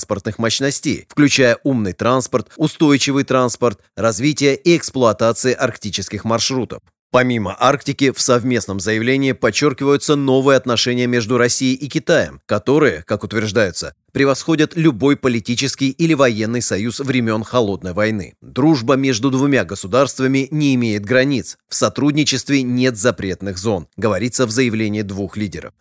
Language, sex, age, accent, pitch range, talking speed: Russian, male, 30-49, native, 115-140 Hz, 125 wpm